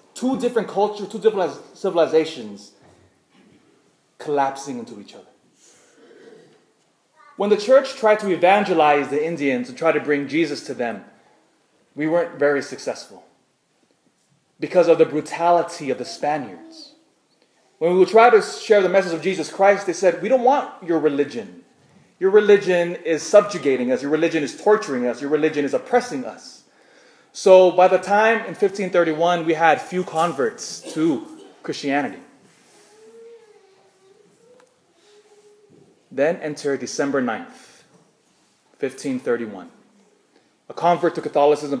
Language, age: English, 20-39